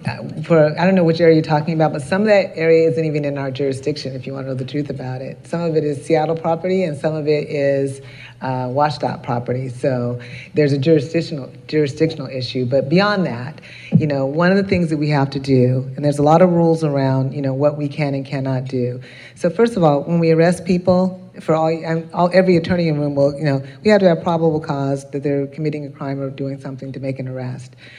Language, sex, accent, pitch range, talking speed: English, female, American, 135-170 Hz, 245 wpm